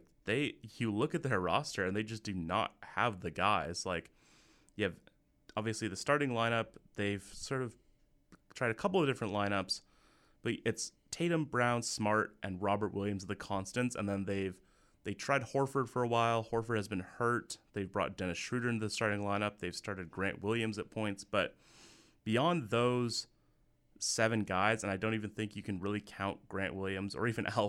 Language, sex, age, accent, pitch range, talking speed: English, male, 30-49, American, 95-115 Hz, 190 wpm